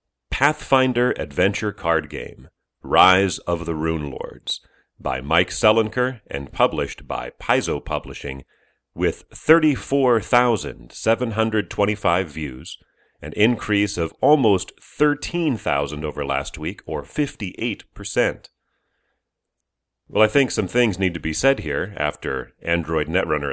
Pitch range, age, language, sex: 75-110 Hz, 40-59, English, male